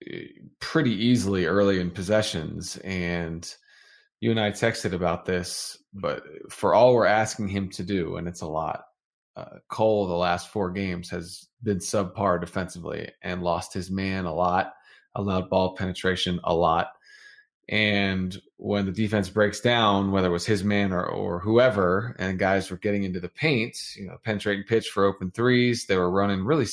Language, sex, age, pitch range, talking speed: English, male, 20-39, 90-105 Hz, 175 wpm